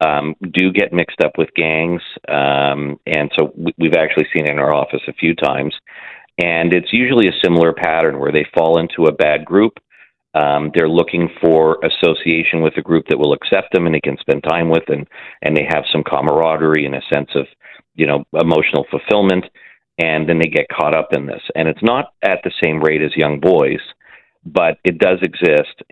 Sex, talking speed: male, 200 wpm